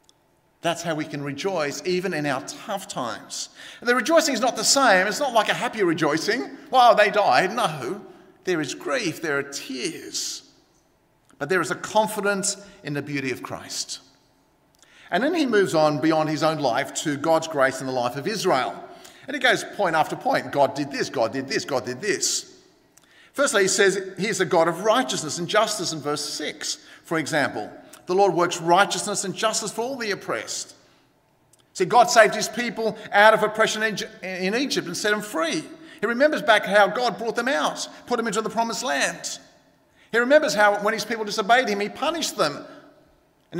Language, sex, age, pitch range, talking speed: English, male, 50-69, 170-240 Hz, 195 wpm